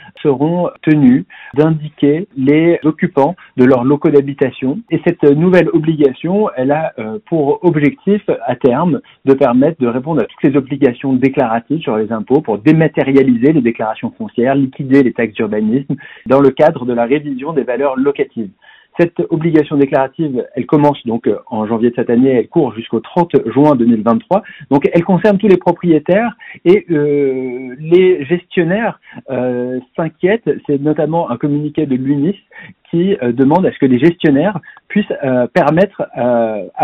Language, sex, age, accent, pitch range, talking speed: French, male, 40-59, French, 130-175 Hz, 155 wpm